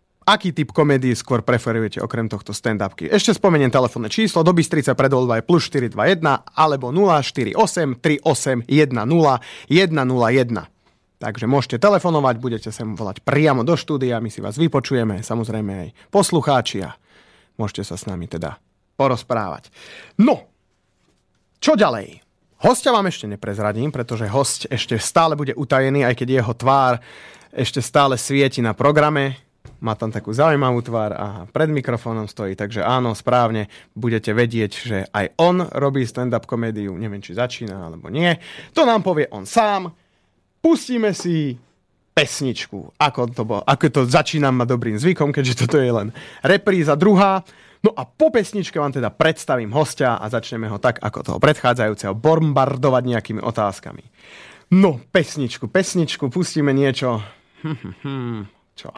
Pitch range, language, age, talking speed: 115-155 Hz, Slovak, 30-49, 140 wpm